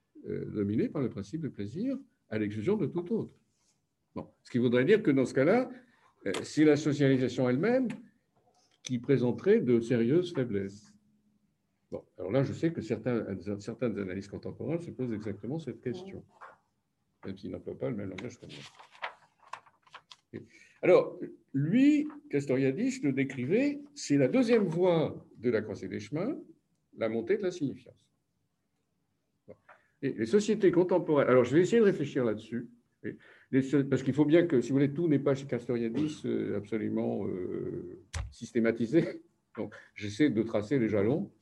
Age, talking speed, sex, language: 60-79, 150 wpm, male, French